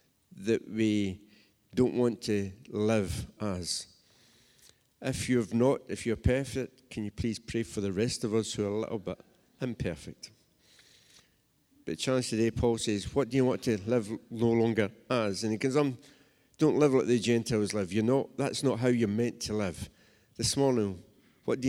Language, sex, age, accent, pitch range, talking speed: English, male, 50-69, British, 105-125 Hz, 180 wpm